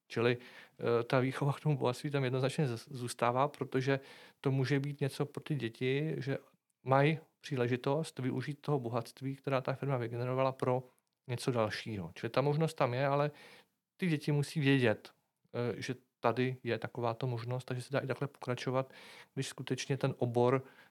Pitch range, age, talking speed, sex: 120-145 Hz, 40-59, 160 wpm, male